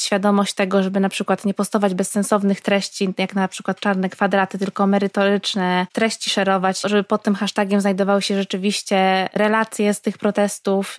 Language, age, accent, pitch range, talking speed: Polish, 20-39, native, 200-220 Hz, 160 wpm